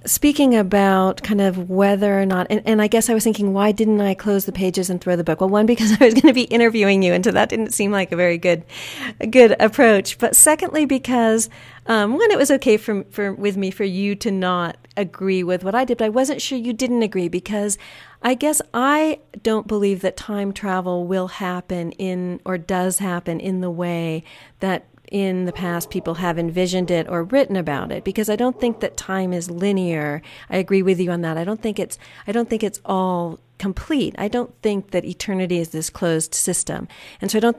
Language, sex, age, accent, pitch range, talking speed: English, female, 40-59, American, 180-220 Hz, 225 wpm